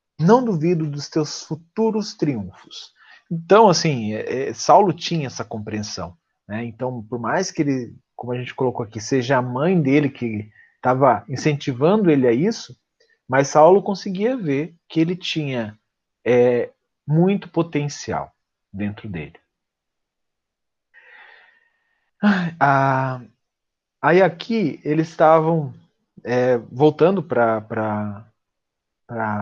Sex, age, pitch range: male, 40-59, 125-185 Hz